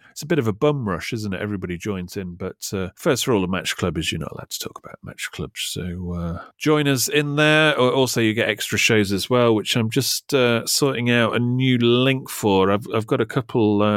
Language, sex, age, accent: English, male, 30-49, British